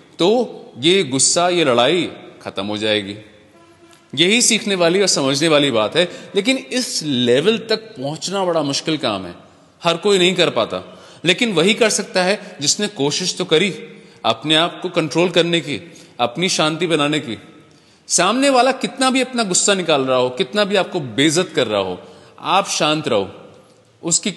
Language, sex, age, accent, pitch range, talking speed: English, male, 30-49, Indian, 150-185 Hz, 170 wpm